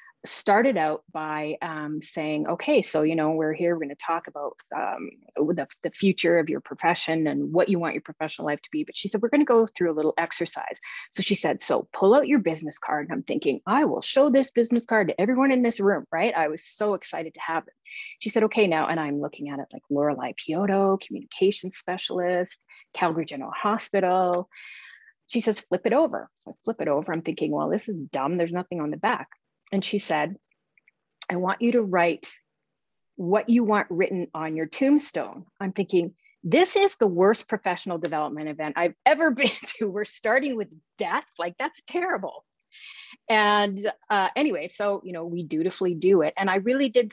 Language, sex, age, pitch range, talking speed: English, female, 30-49, 160-225 Hz, 205 wpm